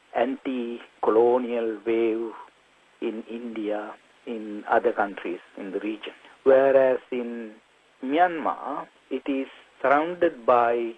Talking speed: 95 wpm